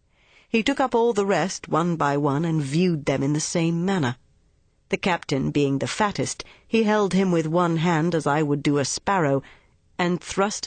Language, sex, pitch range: Chinese, female, 145-180 Hz